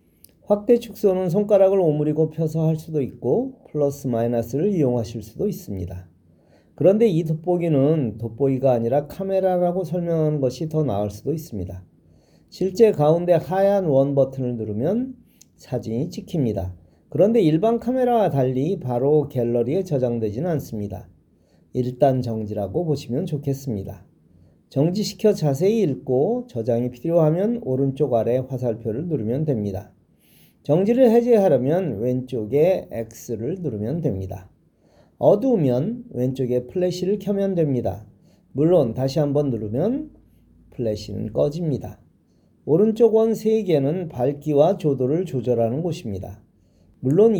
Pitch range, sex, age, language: 115-175 Hz, male, 40-59, Korean